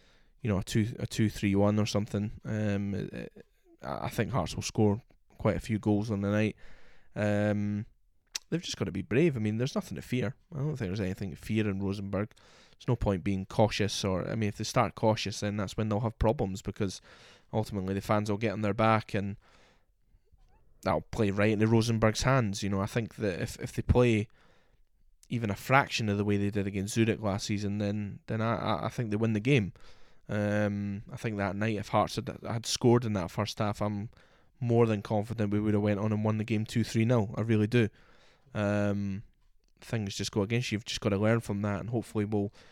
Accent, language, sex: British, English, male